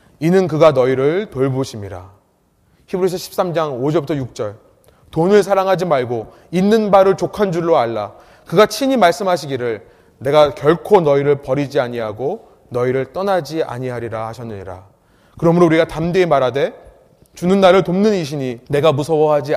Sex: male